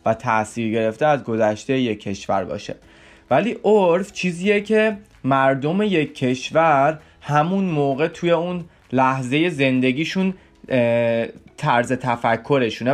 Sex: male